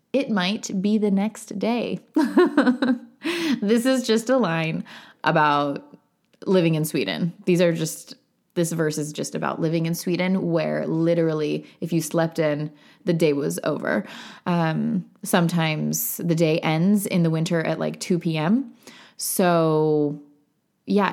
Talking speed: 140 wpm